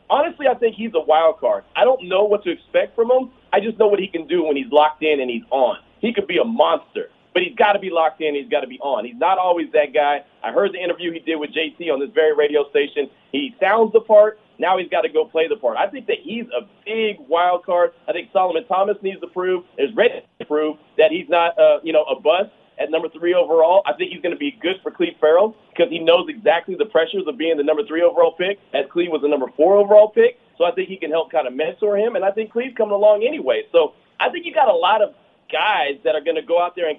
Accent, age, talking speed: American, 30-49, 280 wpm